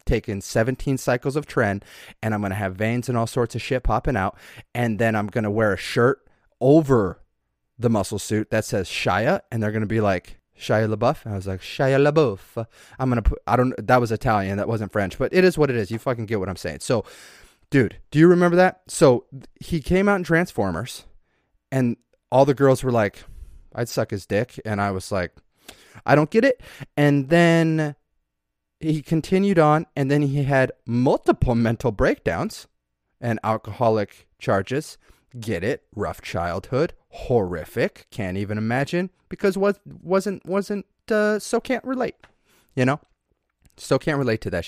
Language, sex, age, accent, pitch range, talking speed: English, male, 30-49, American, 105-155 Hz, 185 wpm